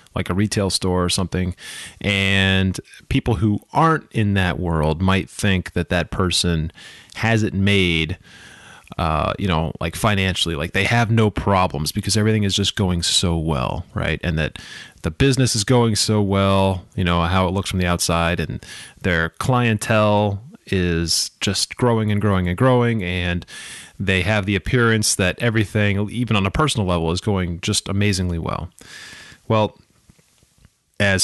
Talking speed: 160 wpm